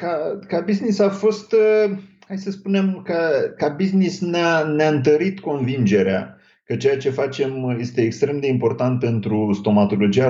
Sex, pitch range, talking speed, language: male, 130-175 Hz, 145 wpm, Romanian